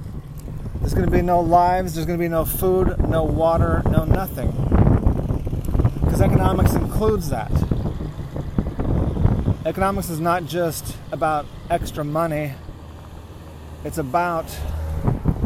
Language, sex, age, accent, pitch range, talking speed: English, male, 30-49, American, 110-170 Hz, 110 wpm